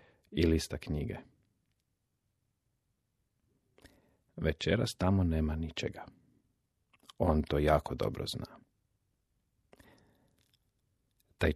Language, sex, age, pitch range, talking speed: Croatian, male, 40-59, 75-100 Hz, 65 wpm